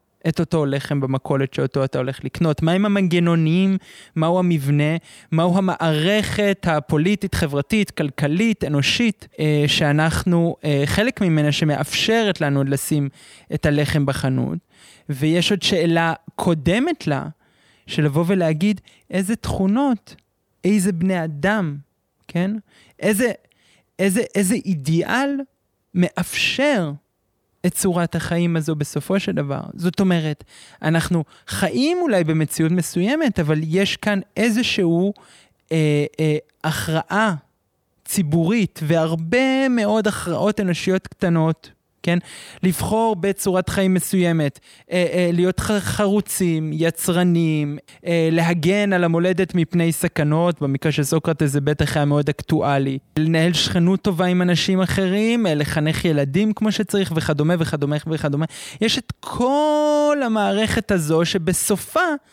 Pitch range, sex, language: 155-205 Hz, male, Hebrew